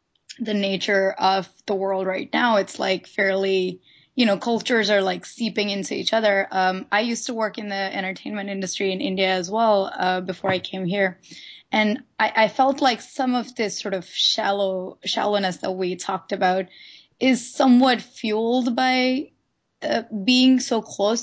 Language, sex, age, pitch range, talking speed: English, female, 20-39, 195-235 Hz, 170 wpm